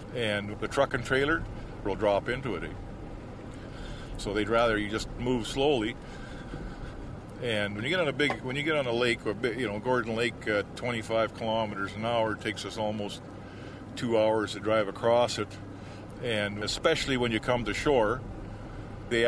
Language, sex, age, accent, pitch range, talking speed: English, male, 50-69, American, 105-130 Hz, 185 wpm